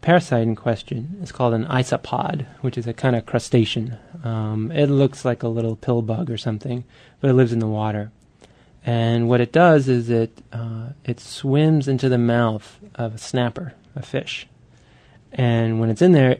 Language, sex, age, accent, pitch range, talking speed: English, male, 20-39, American, 115-140 Hz, 185 wpm